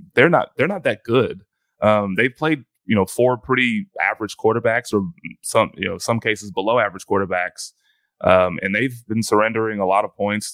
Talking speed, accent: 190 wpm, American